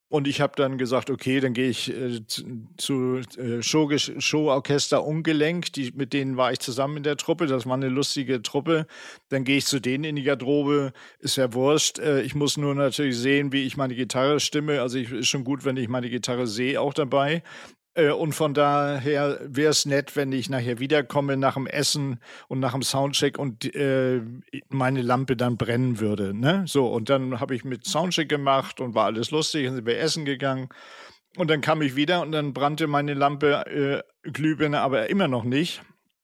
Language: German